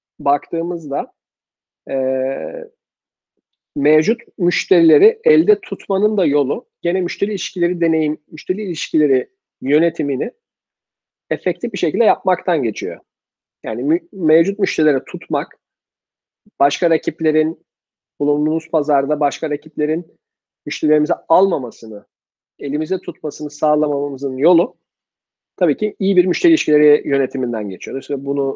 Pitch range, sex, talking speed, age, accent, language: 140-185 Hz, male, 100 wpm, 50-69, native, Turkish